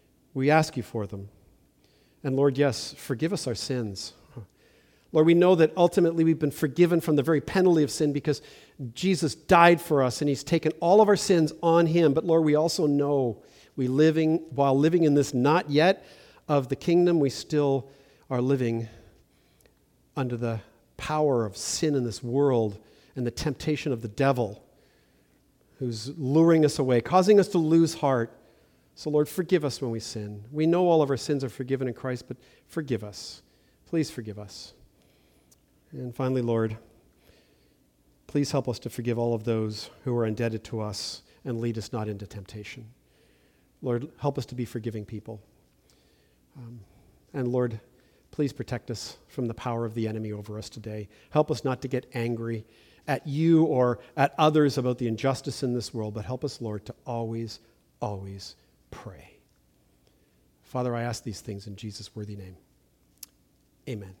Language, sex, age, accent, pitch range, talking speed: English, male, 50-69, American, 110-150 Hz, 175 wpm